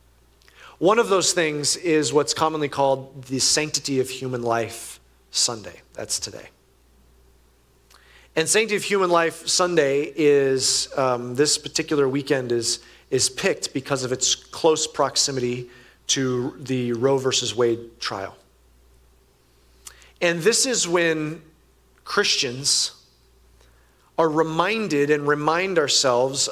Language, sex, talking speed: English, male, 115 wpm